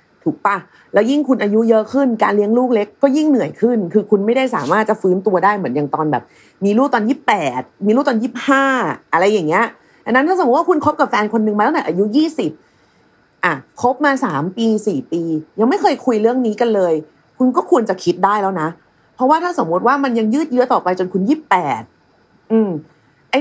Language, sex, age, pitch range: Thai, female, 30-49, 185-265 Hz